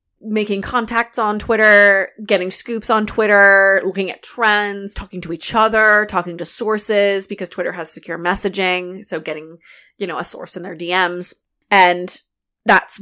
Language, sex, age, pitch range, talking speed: English, female, 20-39, 185-220 Hz, 155 wpm